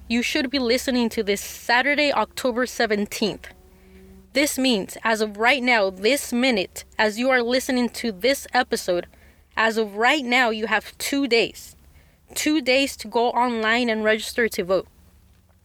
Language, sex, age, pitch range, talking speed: English, female, 20-39, 200-255 Hz, 155 wpm